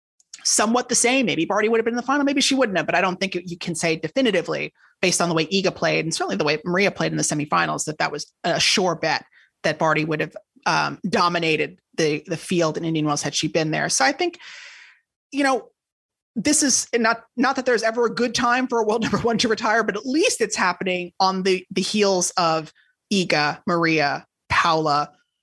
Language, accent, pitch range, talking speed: English, American, 165-225 Hz, 225 wpm